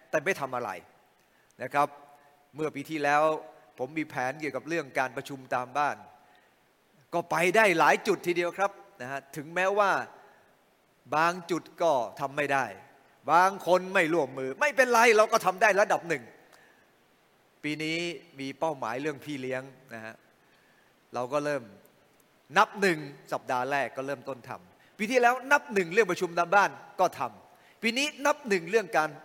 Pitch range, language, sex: 140-180 Hz, English, male